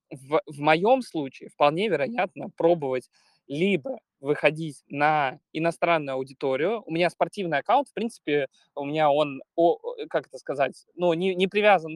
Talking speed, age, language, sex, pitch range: 145 wpm, 20-39, Russian, male, 145-190 Hz